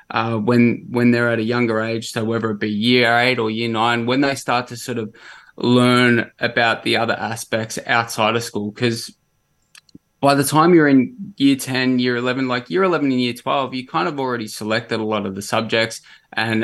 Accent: Australian